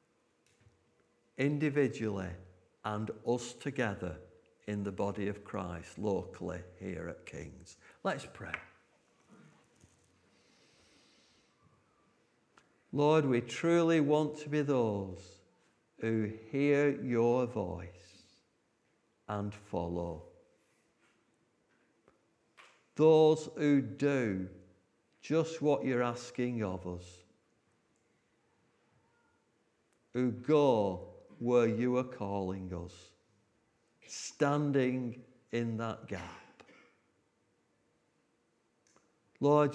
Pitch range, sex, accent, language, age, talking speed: 95-135 Hz, male, British, English, 60-79, 75 wpm